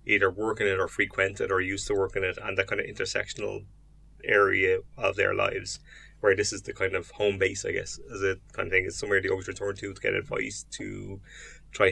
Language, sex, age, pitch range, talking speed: English, male, 20-39, 95-120 Hz, 240 wpm